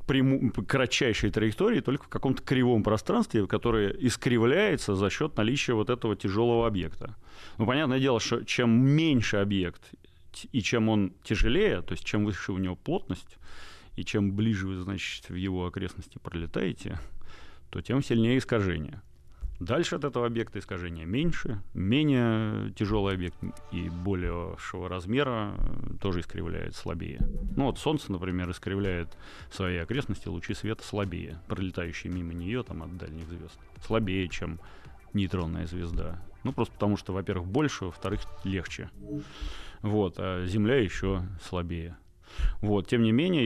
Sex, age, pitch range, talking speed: male, 30-49, 90-115 Hz, 140 wpm